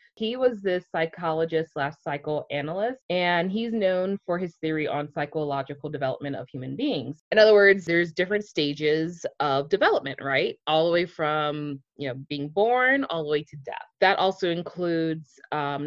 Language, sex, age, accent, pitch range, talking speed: English, female, 20-39, American, 150-190 Hz, 165 wpm